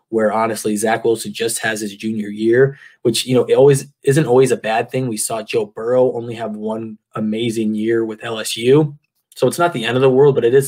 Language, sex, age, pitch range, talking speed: English, male, 20-39, 110-120 Hz, 230 wpm